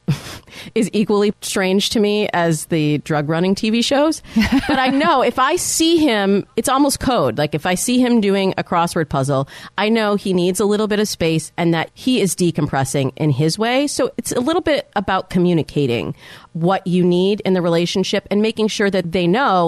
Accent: American